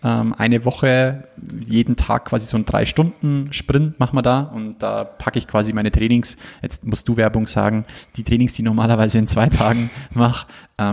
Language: German